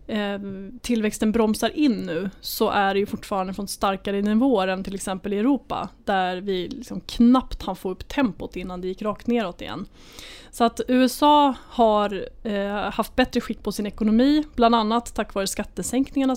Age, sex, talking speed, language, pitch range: 20-39, female, 170 wpm, Swedish, 200-235 Hz